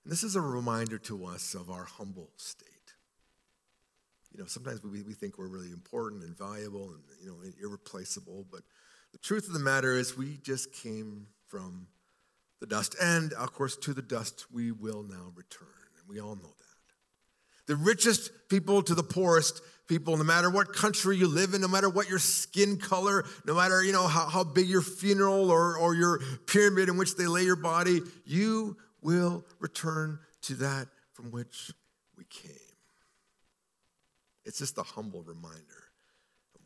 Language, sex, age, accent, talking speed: English, male, 50-69, American, 175 wpm